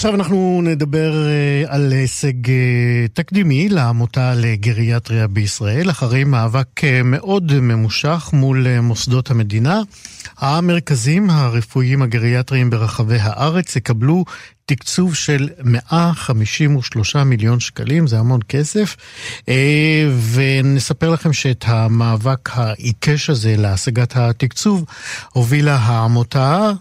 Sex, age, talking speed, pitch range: male, 50-69, 90 wpm, 115-140 Hz